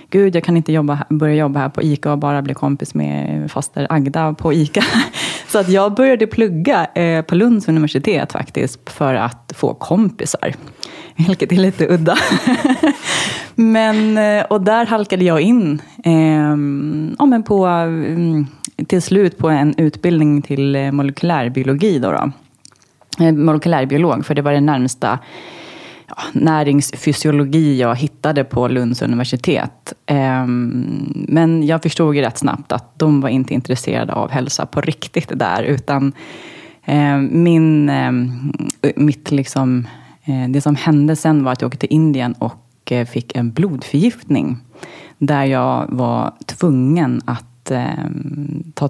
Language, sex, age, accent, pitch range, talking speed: English, female, 30-49, Swedish, 135-165 Hz, 130 wpm